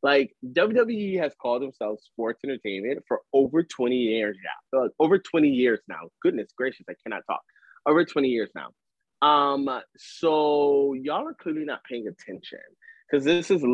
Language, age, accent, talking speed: English, 20-39, American, 165 wpm